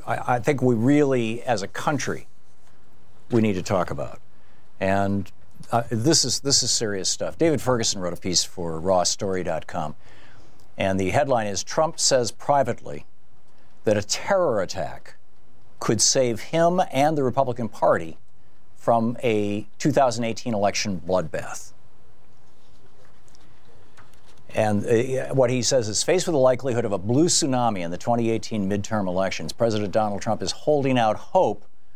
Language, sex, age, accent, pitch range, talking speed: English, male, 60-79, American, 100-135 Hz, 145 wpm